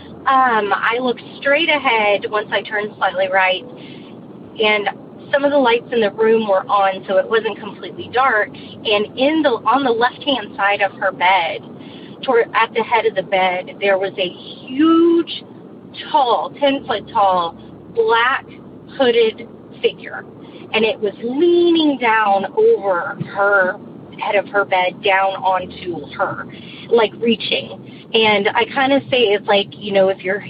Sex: female